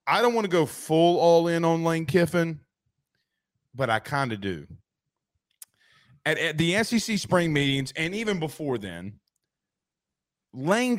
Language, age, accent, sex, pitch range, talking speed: English, 30-49, American, male, 120-170 Hz, 145 wpm